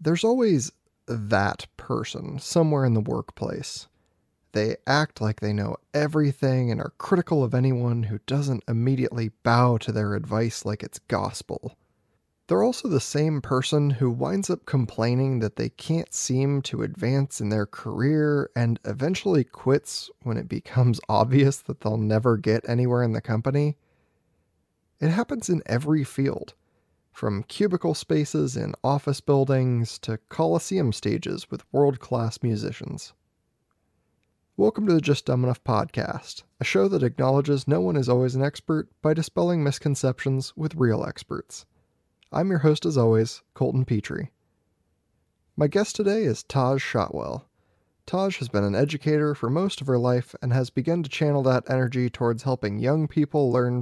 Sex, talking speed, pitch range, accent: male, 155 wpm, 115-150 Hz, American